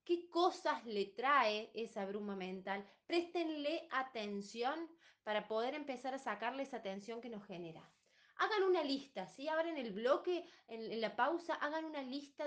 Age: 20-39